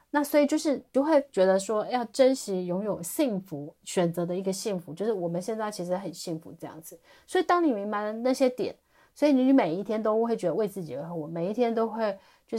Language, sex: Chinese, female